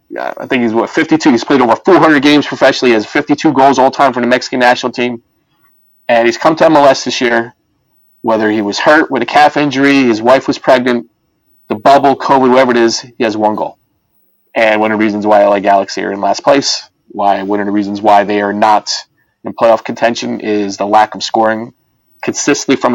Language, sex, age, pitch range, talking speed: English, male, 30-49, 110-135 Hz, 215 wpm